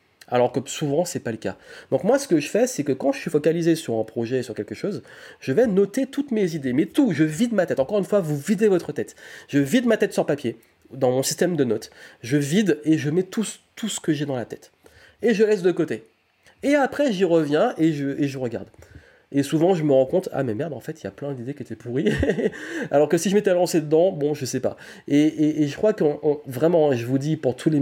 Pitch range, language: 130-180 Hz, French